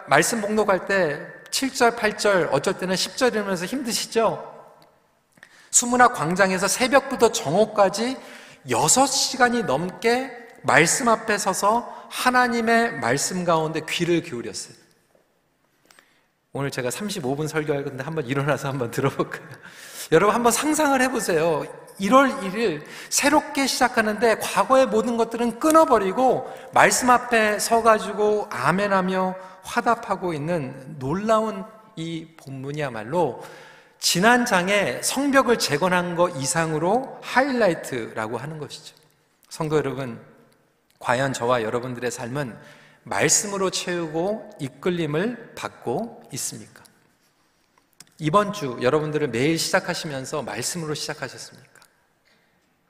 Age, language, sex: 40-59, Korean, male